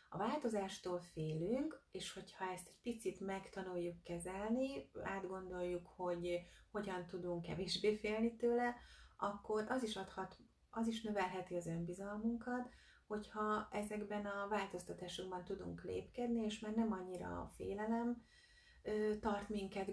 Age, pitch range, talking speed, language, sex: 30-49, 170-210 Hz, 120 wpm, Hungarian, female